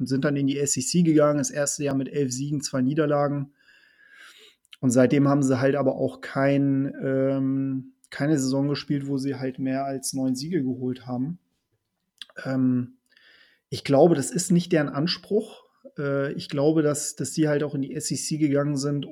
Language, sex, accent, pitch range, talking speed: German, male, German, 135-155 Hz, 180 wpm